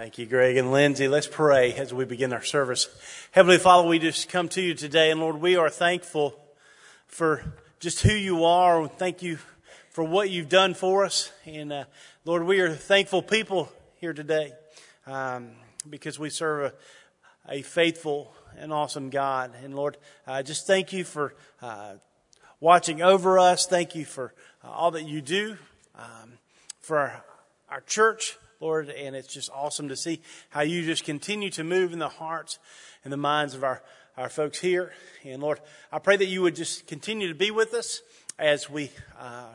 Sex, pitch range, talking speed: male, 145-175 Hz, 185 wpm